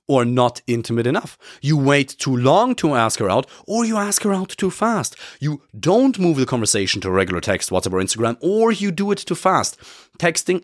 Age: 30-49